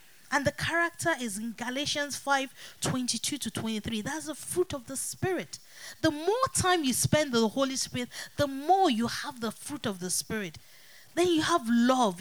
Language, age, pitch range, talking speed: English, 30-49, 220-315 Hz, 180 wpm